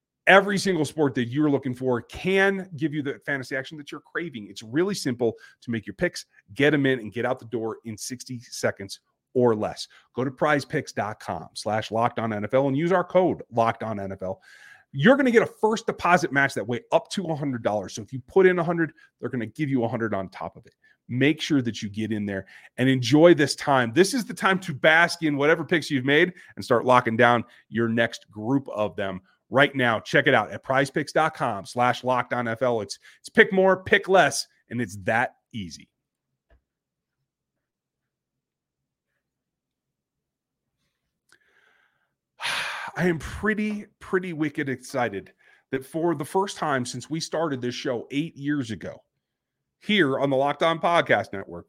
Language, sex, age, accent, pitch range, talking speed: English, male, 30-49, American, 115-160 Hz, 175 wpm